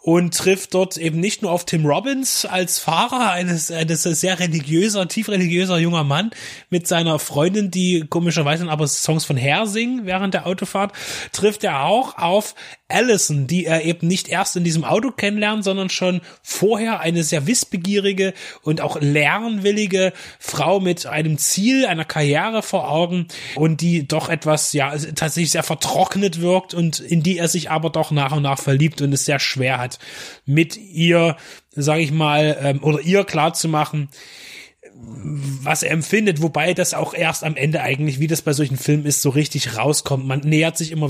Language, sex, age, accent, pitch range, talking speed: German, male, 20-39, German, 150-190 Hz, 175 wpm